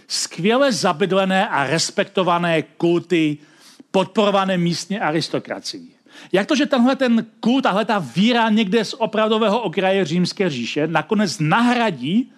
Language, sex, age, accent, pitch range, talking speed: Czech, male, 40-59, native, 170-220 Hz, 120 wpm